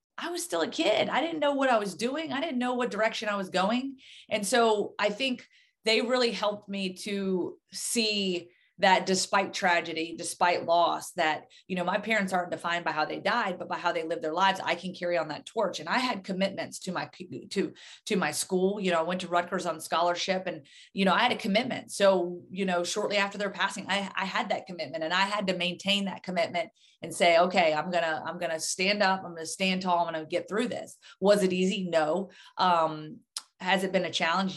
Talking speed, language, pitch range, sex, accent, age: 235 wpm, English, 175-225 Hz, female, American, 30-49